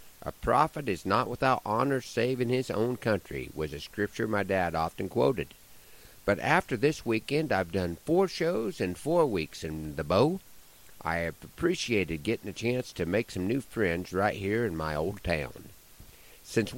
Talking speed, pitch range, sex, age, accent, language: 180 wpm, 90-135 Hz, male, 50-69, American, English